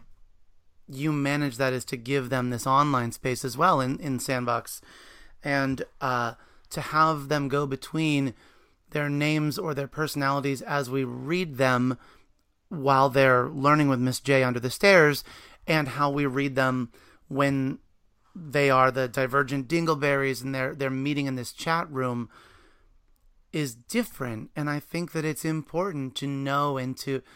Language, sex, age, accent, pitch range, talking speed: English, male, 30-49, American, 130-165 Hz, 155 wpm